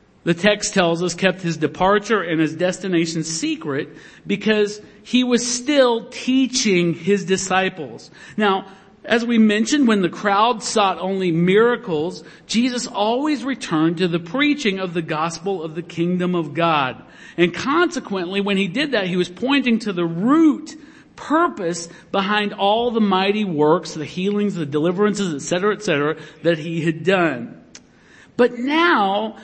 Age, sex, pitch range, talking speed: 50-69, male, 175-245 Hz, 145 wpm